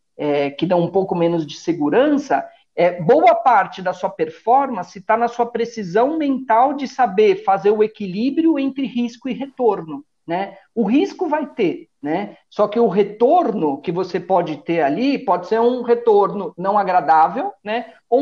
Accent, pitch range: Brazilian, 175-265 Hz